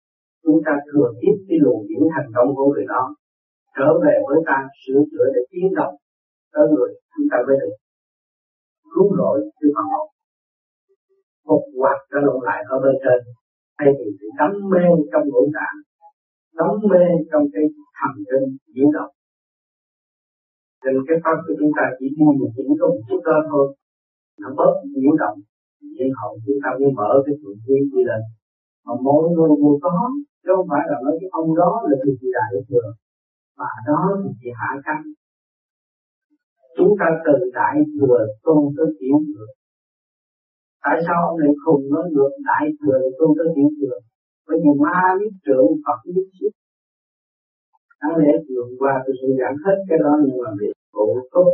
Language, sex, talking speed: Vietnamese, male, 165 wpm